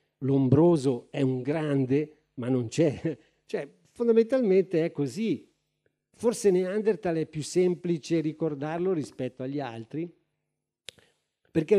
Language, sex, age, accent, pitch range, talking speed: Italian, male, 50-69, native, 130-170 Hz, 105 wpm